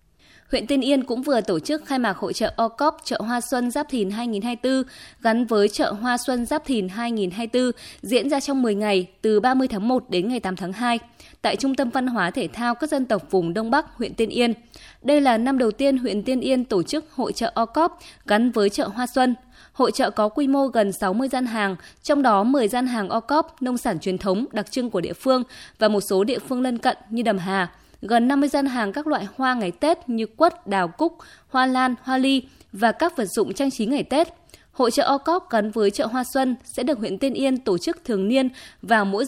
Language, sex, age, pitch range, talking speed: Vietnamese, female, 20-39, 215-270 Hz, 235 wpm